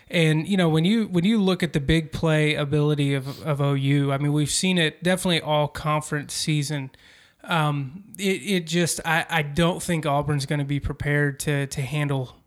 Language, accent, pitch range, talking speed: English, American, 145-165 Hz, 195 wpm